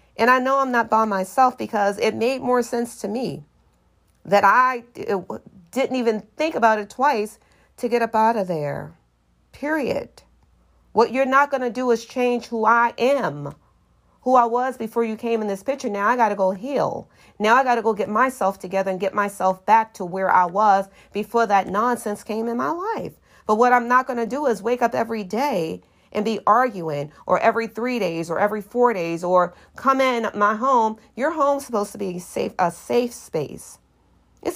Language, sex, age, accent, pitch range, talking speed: English, female, 40-59, American, 195-245 Hz, 200 wpm